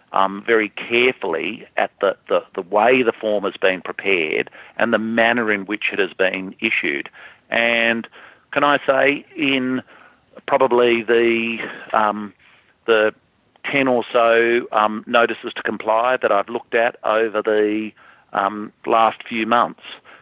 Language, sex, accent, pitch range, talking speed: English, male, Australian, 105-120 Hz, 140 wpm